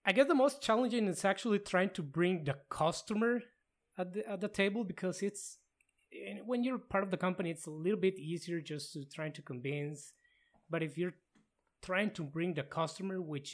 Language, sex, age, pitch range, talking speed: English, male, 20-39, 155-195 Hz, 195 wpm